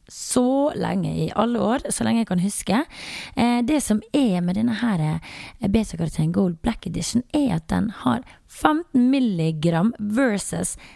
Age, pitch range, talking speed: 30-49, 165-245 Hz, 165 wpm